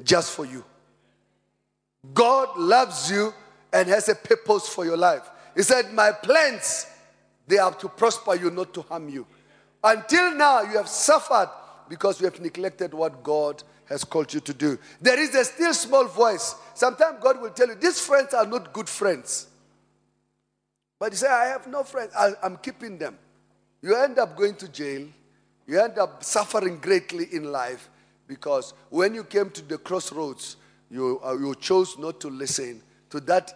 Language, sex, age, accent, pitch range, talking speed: English, male, 40-59, South African, 150-225 Hz, 175 wpm